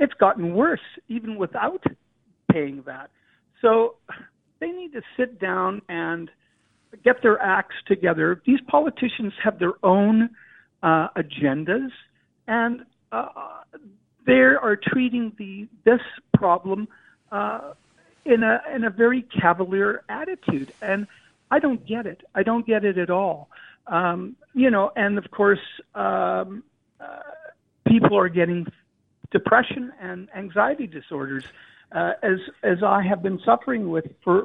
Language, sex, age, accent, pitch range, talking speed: English, male, 60-79, American, 175-230 Hz, 130 wpm